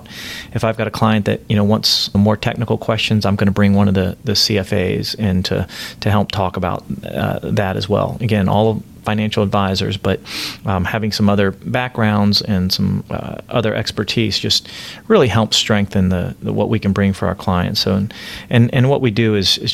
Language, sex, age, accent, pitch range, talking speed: English, male, 30-49, American, 100-115 Hz, 210 wpm